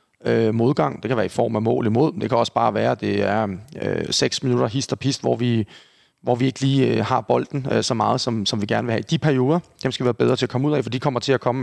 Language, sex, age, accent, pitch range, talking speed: Danish, male, 30-49, native, 115-135 Hz, 295 wpm